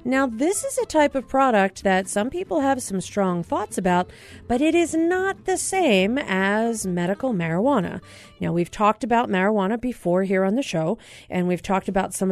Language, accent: English, American